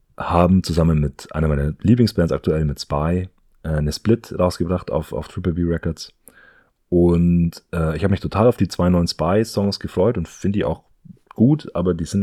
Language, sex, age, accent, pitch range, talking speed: German, male, 30-49, German, 75-95 Hz, 180 wpm